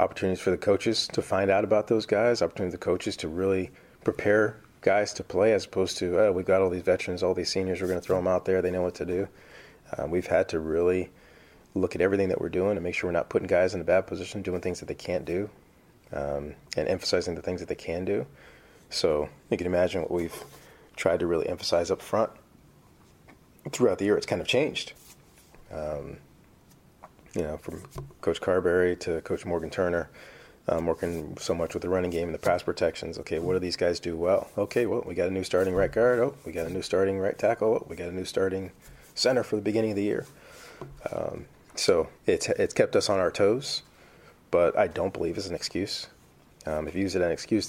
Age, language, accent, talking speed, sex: 30-49, English, American, 230 wpm, male